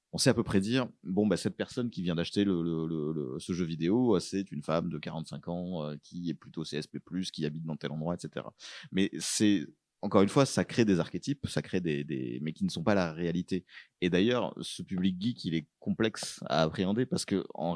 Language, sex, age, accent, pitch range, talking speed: French, male, 30-49, French, 85-110 Hz, 235 wpm